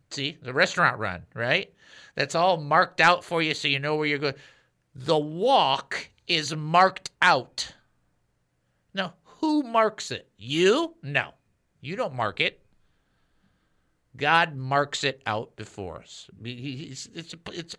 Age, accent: 50-69, American